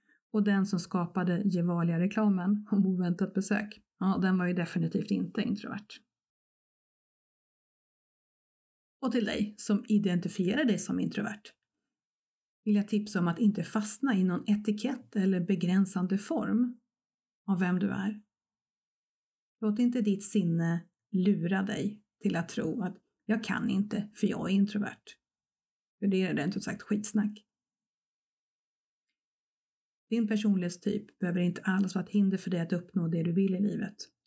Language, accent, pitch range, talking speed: Swedish, native, 185-215 Hz, 145 wpm